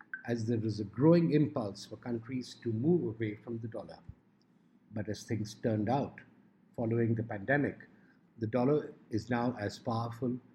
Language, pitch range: English, 110-140 Hz